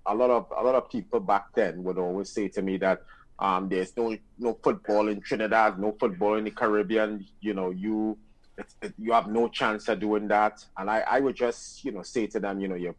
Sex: male